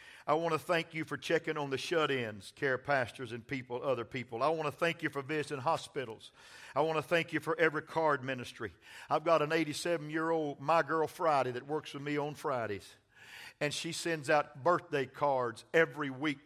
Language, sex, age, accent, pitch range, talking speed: English, male, 50-69, American, 155-205 Hz, 195 wpm